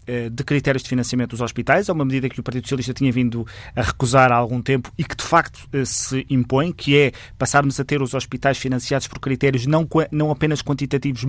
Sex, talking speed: male, 215 wpm